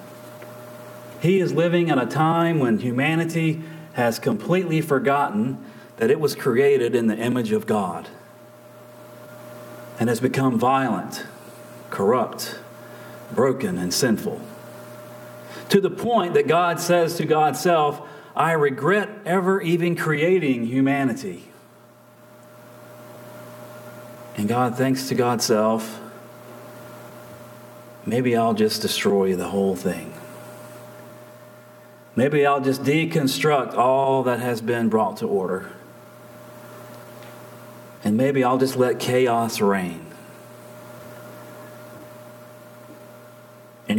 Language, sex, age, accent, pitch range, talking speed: English, male, 40-59, American, 120-145 Hz, 100 wpm